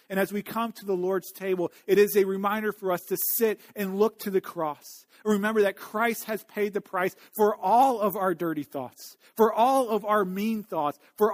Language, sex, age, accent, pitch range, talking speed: English, male, 40-59, American, 185-225 Hz, 215 wpm